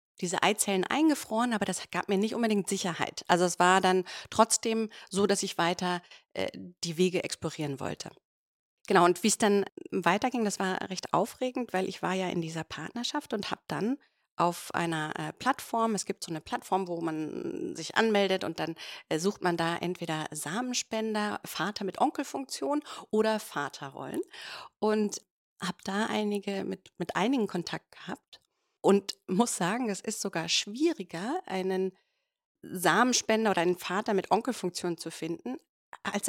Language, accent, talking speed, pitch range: German, German, 160 wpm, 180-230 Hz